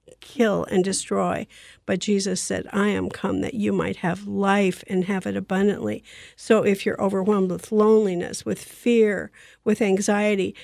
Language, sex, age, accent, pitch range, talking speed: English, female, 50-69, American, 185-220 Hz, 160 wpm